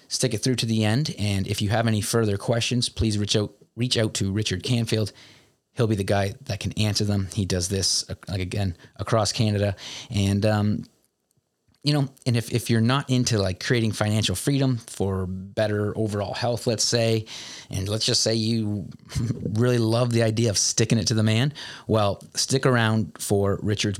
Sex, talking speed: male, 190 wpm